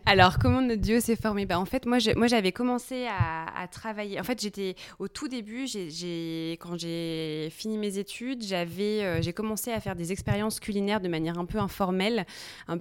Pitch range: 165-205 Hz